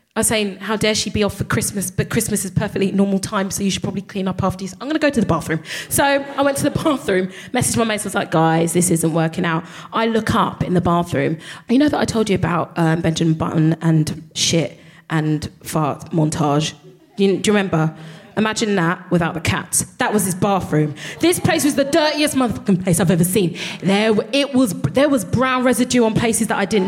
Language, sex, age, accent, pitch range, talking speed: English, female, 20-39, British, 180-245 Hz, 230 wpm